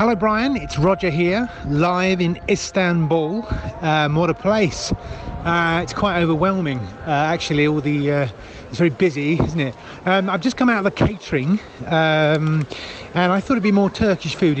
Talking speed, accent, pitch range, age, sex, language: 175 wpm, British, 150-180 Hz, 30-49, male, English